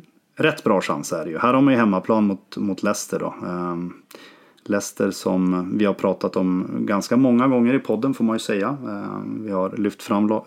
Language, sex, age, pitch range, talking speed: English, male, 30-49, 95-120 Hz, 205 wpm